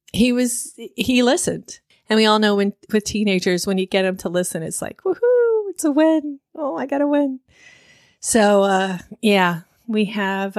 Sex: female